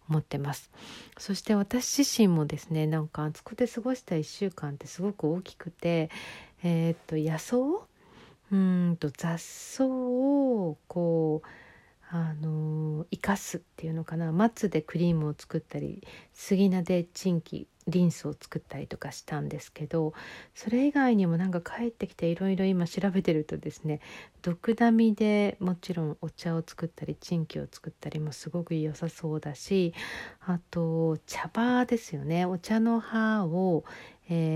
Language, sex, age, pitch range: Japanese, female, 50-69, 160-210 Hz